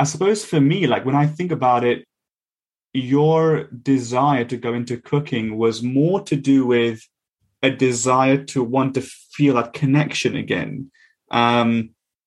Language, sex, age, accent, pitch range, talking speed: English, male, 20-39, British, 120-140 Hz, 150 wpm